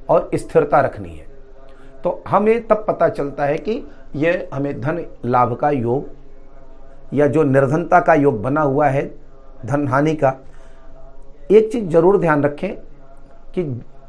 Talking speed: 145 wpm